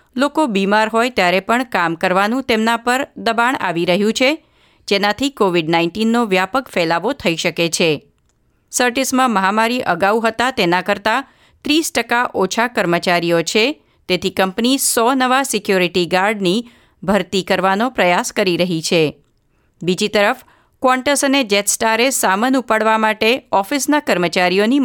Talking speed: 100 wpm